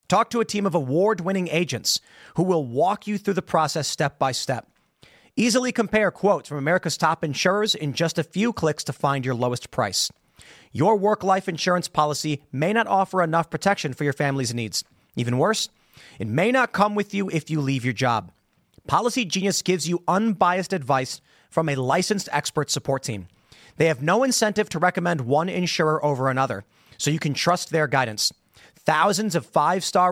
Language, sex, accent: English, male, American